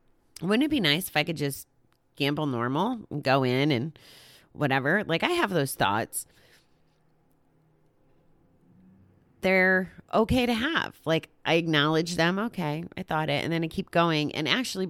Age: 30-49